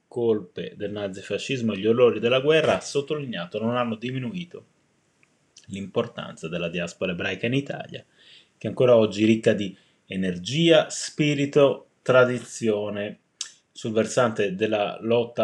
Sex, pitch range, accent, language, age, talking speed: male, 110-145 Hz, native, Italian, 20-39, 120 wpm